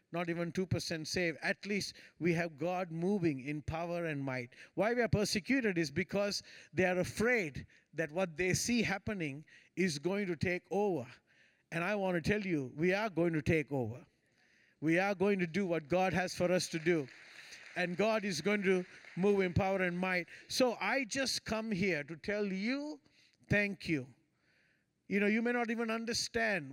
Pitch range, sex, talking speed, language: 165-210 Hz, male, 190 wpm, English